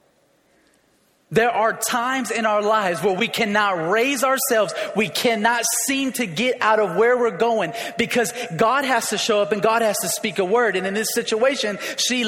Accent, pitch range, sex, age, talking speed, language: American, 195-235 Hz, male, 30-49, 190 wpm, English